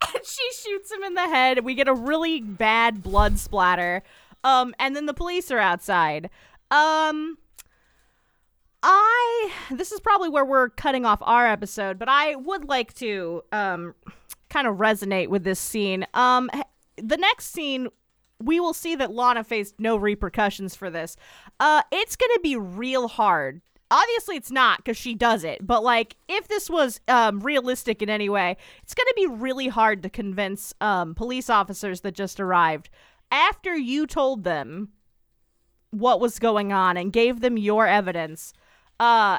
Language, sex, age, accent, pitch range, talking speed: English, female, 20-39, American, 200-300 Hz, 170 wpm